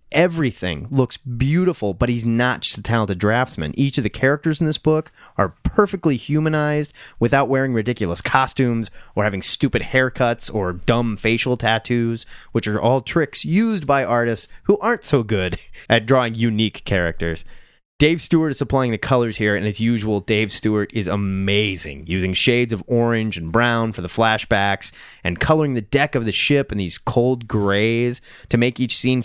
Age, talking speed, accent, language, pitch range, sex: 30-49, 175 wpm, American, English, 110-140 Hz, male